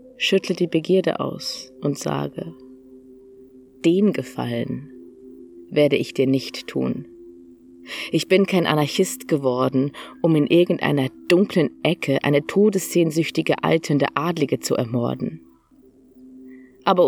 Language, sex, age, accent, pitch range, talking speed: German, female, 30-49, German, 130-185 Hz, 105 wpm